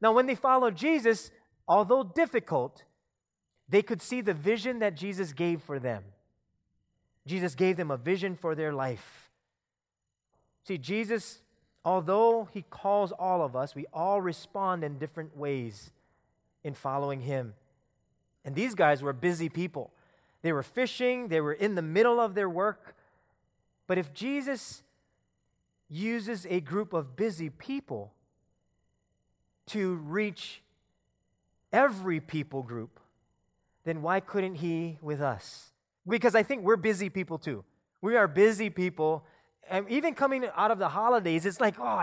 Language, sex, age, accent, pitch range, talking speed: English, male, 30-49, American, 155-225 Hz, 145 wpm